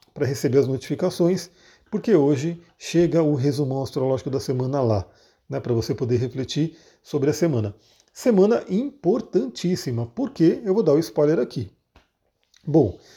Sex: male